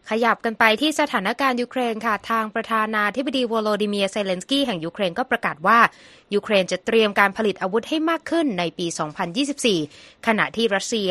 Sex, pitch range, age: female, 175-230 Hz, 20-39